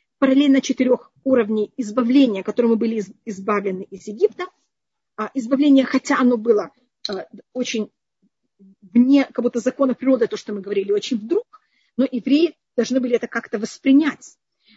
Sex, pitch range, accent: female, 220-275 Hz, native